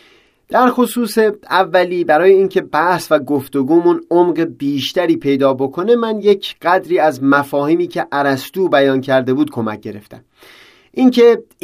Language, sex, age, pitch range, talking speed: Persian, male, 30-49, 145-200 Hz, 130 wpm